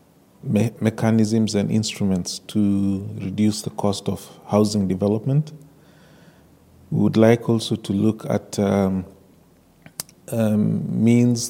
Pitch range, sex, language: 100-115 Hz, male, English